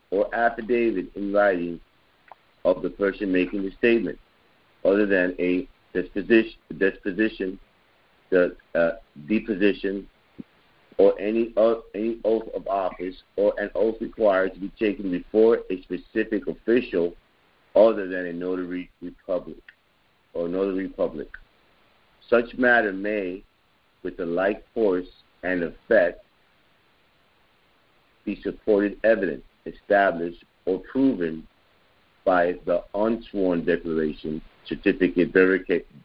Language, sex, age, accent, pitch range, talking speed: English, male, 50-69, American, 90-105 Hz, 110 wpm